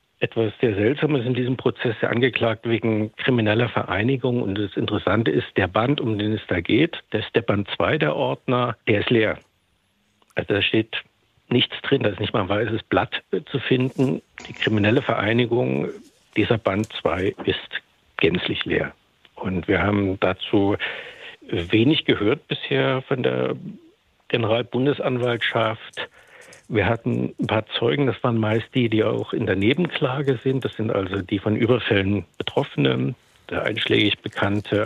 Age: 60-79